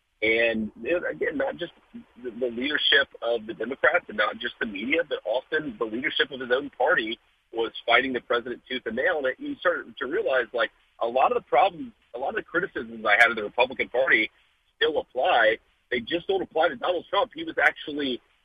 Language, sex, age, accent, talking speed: English, male, 40-59, American, 205 wpm